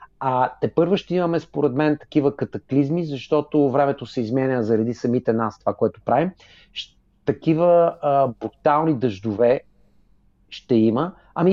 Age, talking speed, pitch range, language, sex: 30-49, 125 wpm, 120-150 Hz, English, male